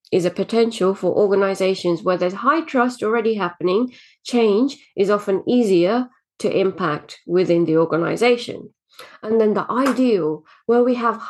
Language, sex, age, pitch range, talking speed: English, female, 30-49, 195-270 Hz, 145 wpm